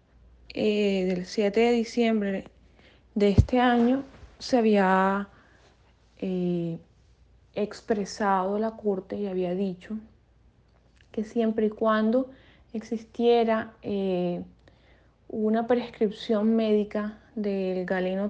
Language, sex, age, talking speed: Spanish, female, 20-39, 90 wpm